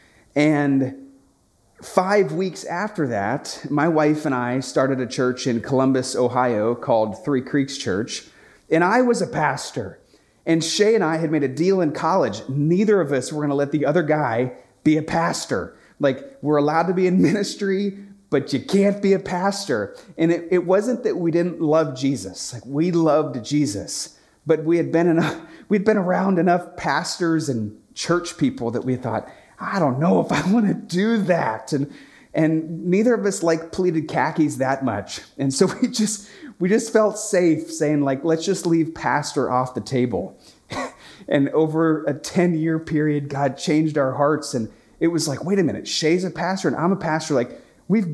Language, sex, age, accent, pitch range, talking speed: English, male, 30-49, American, 135-180 Hz, 190 wpm